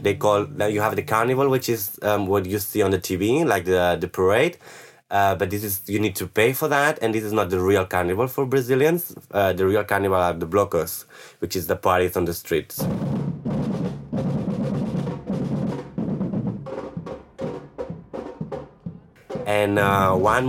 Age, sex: 20-39, male